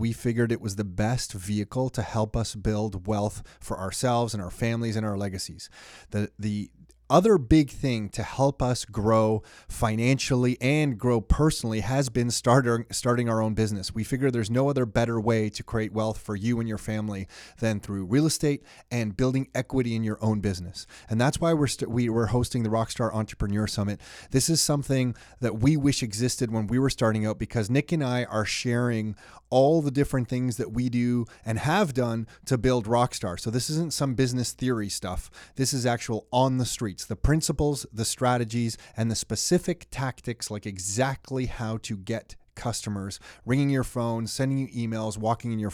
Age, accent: 30-49, American